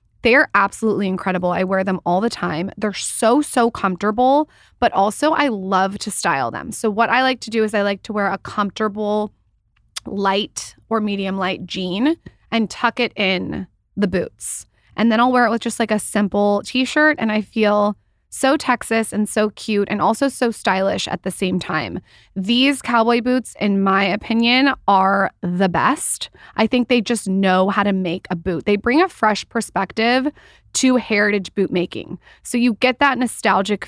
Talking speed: 185 wpm